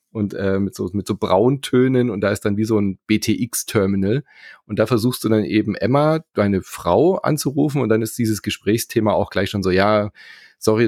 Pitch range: 100-115 Hz